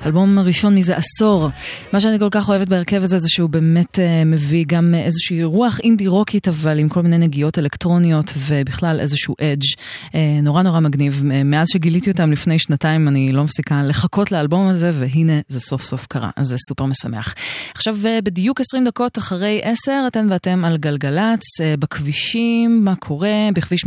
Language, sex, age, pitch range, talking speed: Hebrew, female, 20-39, 145-185 Hz, 170 wpm